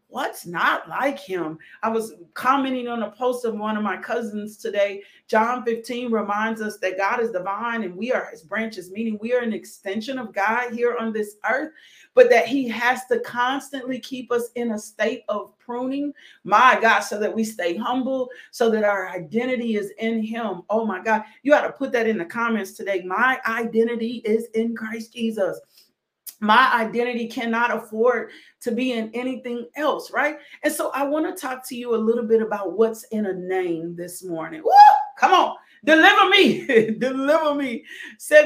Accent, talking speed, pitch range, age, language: American, 185 wpm, 200-250 Hz, 40-59, English